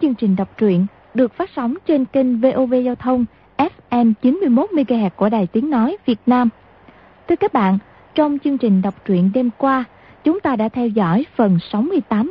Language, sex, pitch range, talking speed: Vietnamese, female, 205-275 Hz, 185 wpm